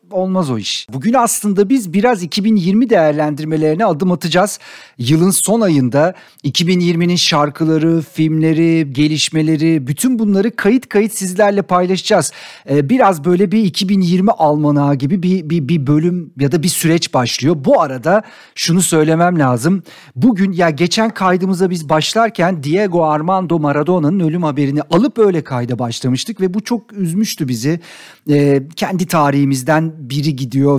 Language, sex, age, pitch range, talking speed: Turkish, male, 50-69, 145-195 Hz, 135 wpm